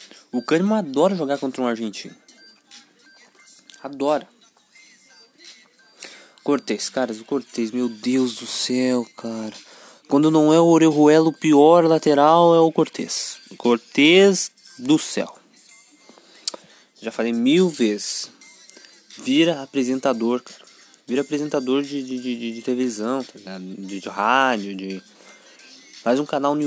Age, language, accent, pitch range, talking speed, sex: 20-39, Portuguese, Brazilian, 120-170 Hz, 125 wpm, male